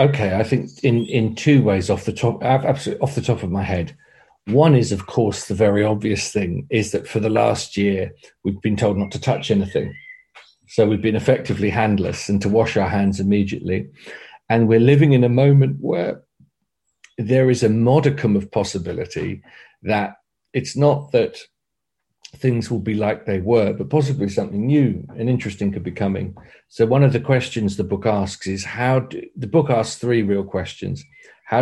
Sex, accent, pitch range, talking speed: male, British, 100-125 Hz, 185 wpm